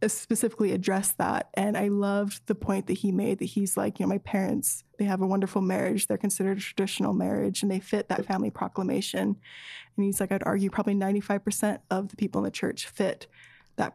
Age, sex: 10-29, female